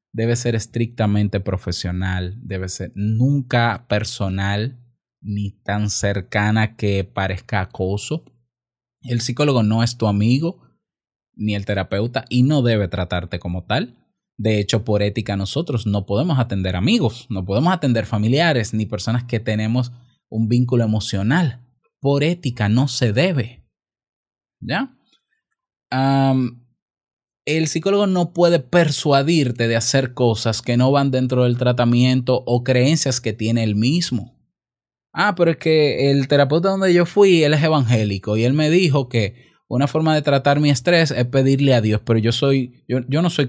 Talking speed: 150 wpm